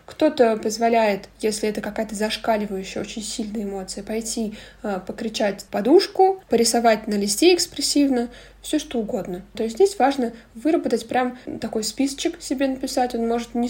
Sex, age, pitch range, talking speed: female, 20-39, 210-255 Hz, 145 wpm